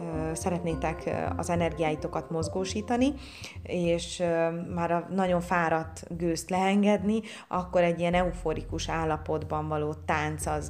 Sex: female